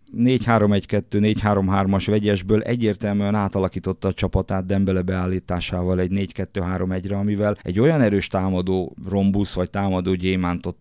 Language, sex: Hungarian, male